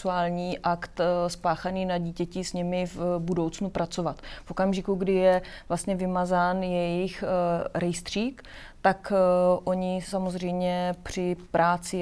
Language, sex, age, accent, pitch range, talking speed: Czech, female, 30-49, native, 170-185 Hz, 110 wpm